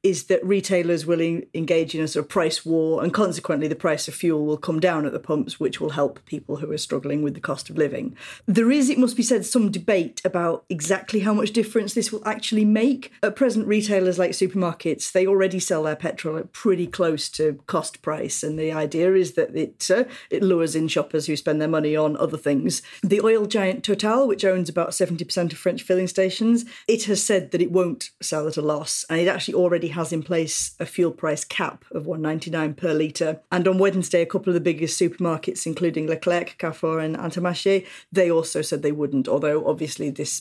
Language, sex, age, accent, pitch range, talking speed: English, female, 40-59, British, 160-195 Hz, 215 wpm